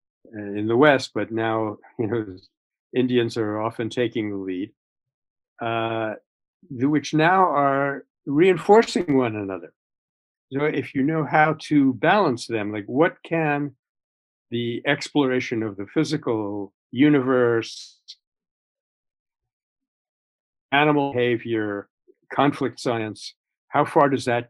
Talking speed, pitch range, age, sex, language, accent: 115 wpm, 110-145 Hz, 50-69, male, Hindi, American